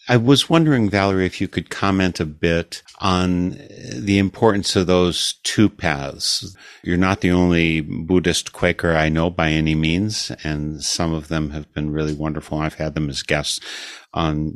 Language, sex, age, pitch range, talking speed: English, male, 50-69, 80-100 Hz, 175 wpm